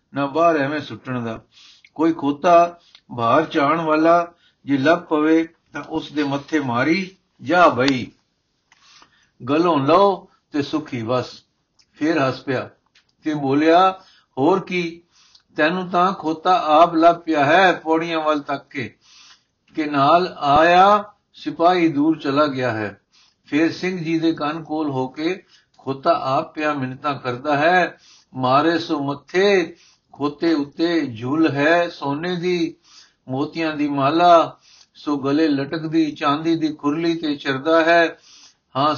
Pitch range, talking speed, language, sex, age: 145-170 Hz, 105 wpm, Punjabi, male, 60-79